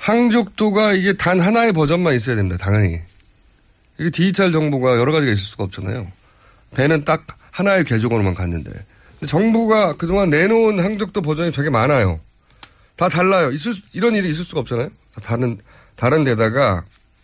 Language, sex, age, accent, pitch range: Korean, male, 30-49, native, 105-175 Hz